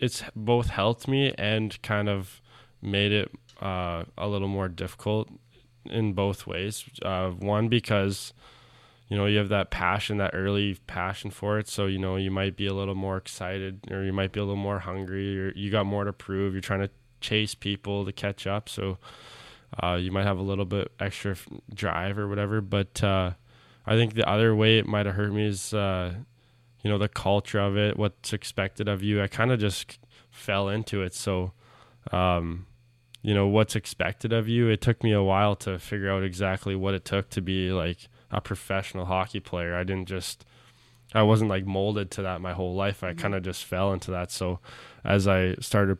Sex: male